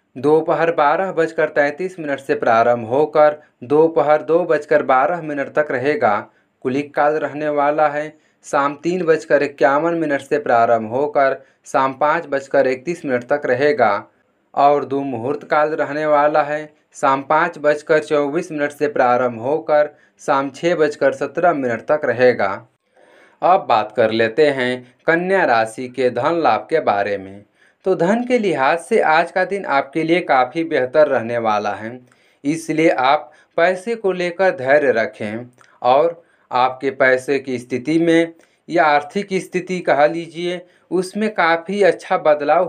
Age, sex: 30-49, male